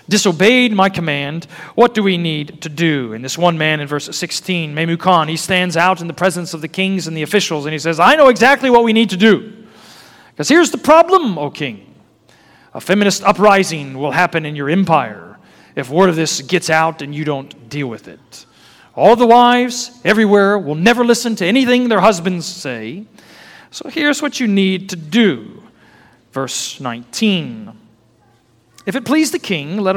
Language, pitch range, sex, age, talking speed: English, 145-210 Hz, male, 40-59, 190 wpm